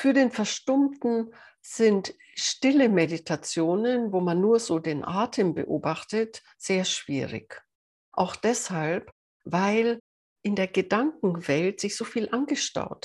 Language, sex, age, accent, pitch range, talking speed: German, female, 60-79, German, 165-230 Hz, 115 wpm